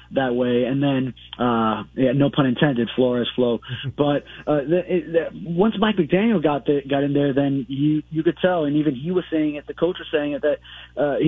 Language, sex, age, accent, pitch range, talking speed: English, male, 20-39, American, 135-160 Hz, 220 wpm